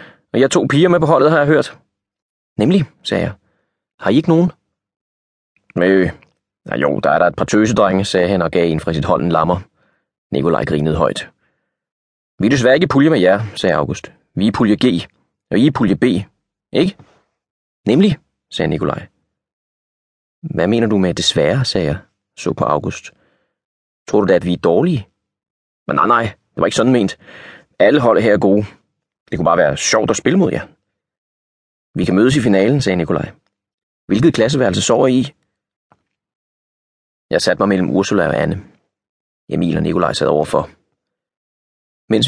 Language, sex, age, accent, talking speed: Danish, male, 30-49, native, 185 wpm